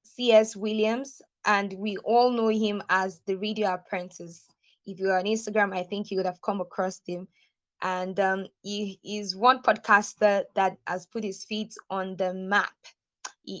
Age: 20-39